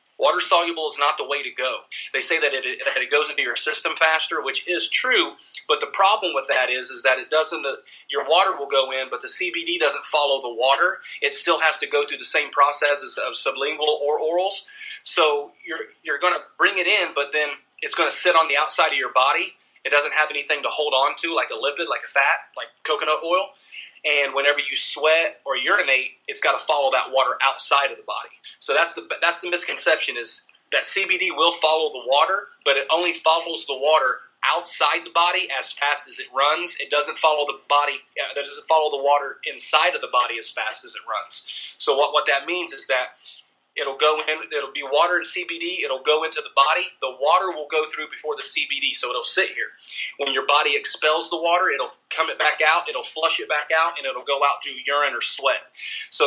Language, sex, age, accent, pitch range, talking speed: English, male, 30-49, American, 140-165 Hz, 225 wpm